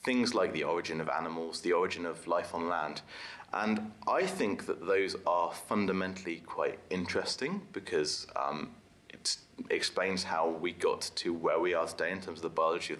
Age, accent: 30-49, British